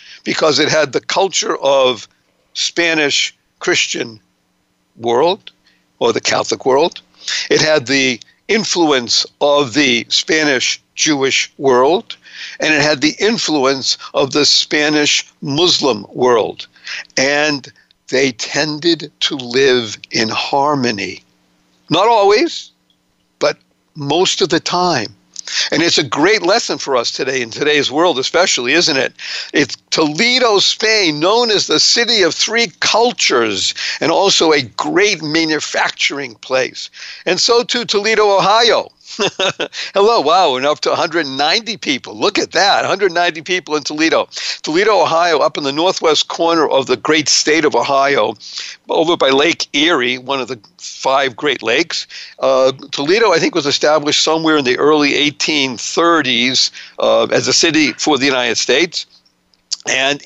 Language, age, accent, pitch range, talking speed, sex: English, 60-79, American, 130-170 Hz, 135 wpm, male